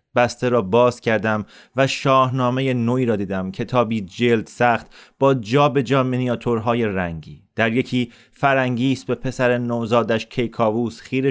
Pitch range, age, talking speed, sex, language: 115-135 Hz, 30-49, 135 wpm, male, Persian